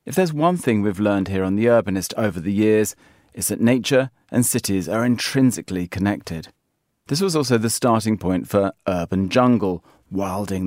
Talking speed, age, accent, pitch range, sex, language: 175 wpm, 40-59, British, 95-125 Hz, male, English